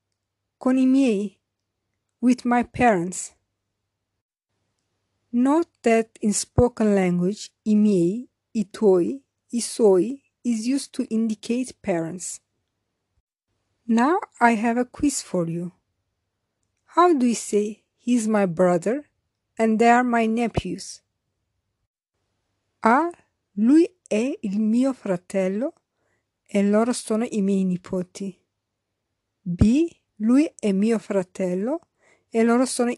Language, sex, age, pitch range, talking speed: English, female, 50-69, 180-245 Hz, 115 wpm